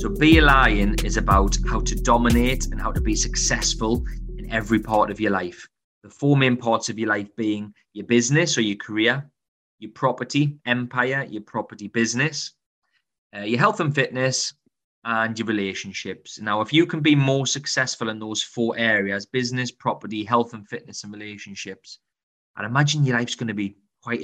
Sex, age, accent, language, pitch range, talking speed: male, 20-39, British, English, 105-125 Hz, 180 wpm